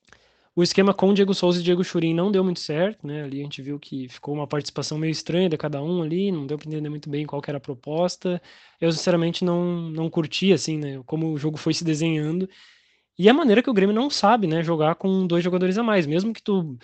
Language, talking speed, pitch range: Portuguese, 250 wpm, 150-190 Hz